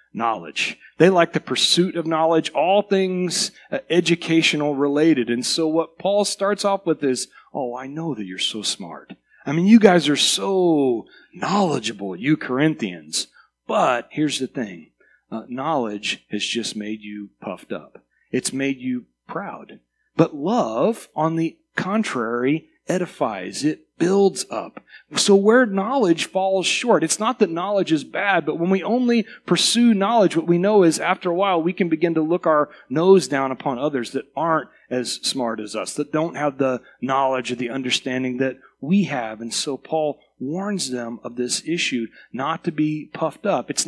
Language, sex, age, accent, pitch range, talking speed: English, male, 40-59, American, 130-180 Hz, 170 wpm